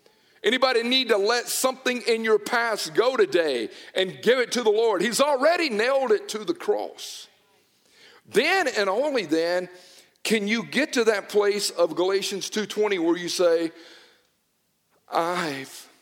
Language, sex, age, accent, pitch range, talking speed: English, male, 50-69, American, 185-265 Hz, 150 wpm